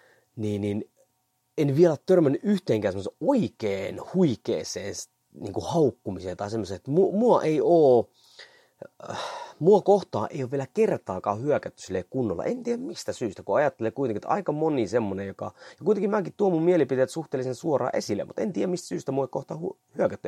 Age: 30-49